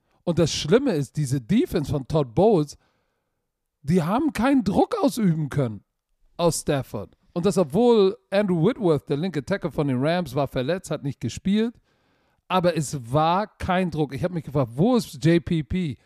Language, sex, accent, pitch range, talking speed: German, male, German, 145-185 Hz, 170 wpm